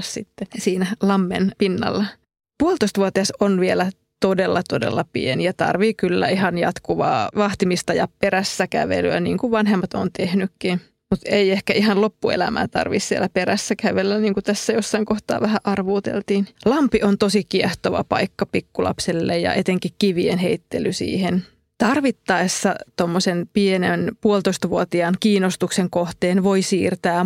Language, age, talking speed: Finnish, 20-39, 130 wpm